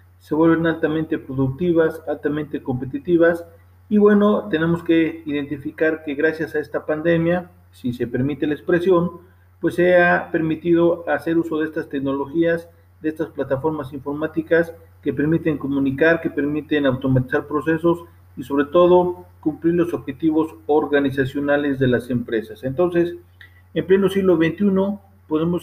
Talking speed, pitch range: 135 wpm, 135-170 Hz